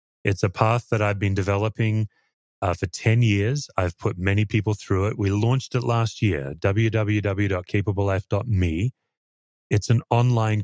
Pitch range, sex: 95-115 Hz, male